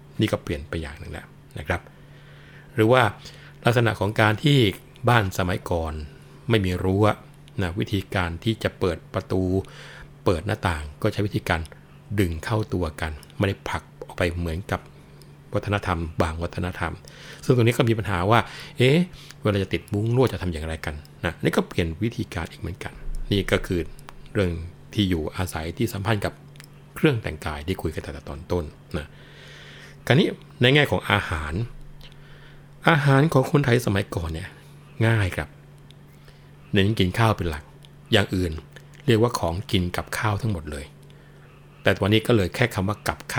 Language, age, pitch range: Thai, 60-79, 90-125 Hz